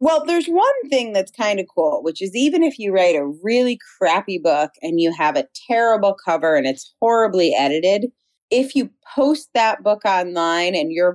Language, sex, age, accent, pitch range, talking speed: English, female, 30-49, American, 160-270 Hz, 195 wpm